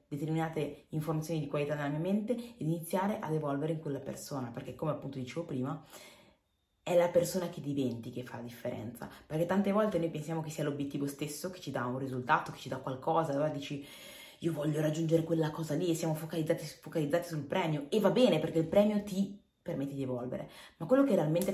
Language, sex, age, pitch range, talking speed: Italian, female, 20-39, 130-170 Hz, 205 wpm